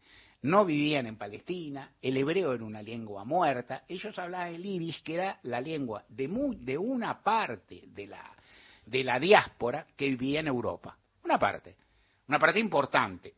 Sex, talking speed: male, 165 wpm